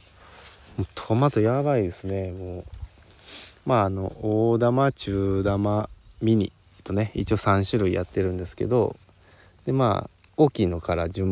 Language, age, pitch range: Japanese, 20-39, 90-120 Hz